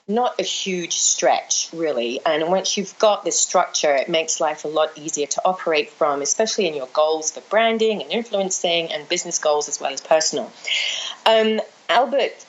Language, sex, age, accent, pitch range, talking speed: English, female, 30-49, British, 160-215 Hz, 180 wpm